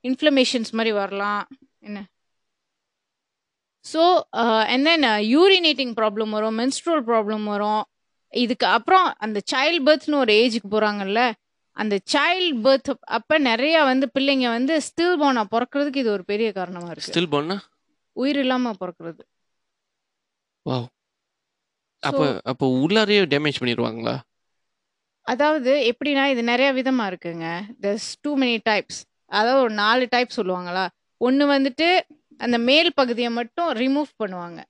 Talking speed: 60 wpm